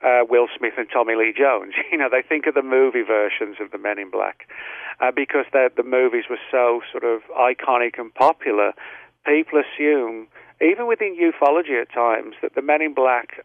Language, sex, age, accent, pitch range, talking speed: English, male, 50-69, British, 120-150 Hz, 190 wpm